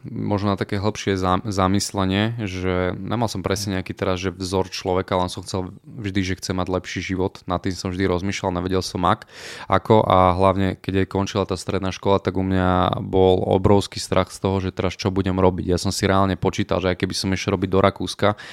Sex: male